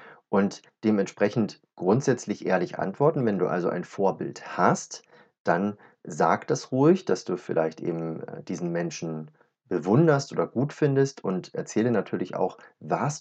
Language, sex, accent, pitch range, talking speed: German, male, German, 90-120 Hz, 135 wpm